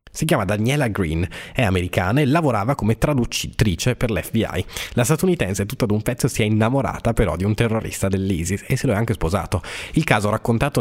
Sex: male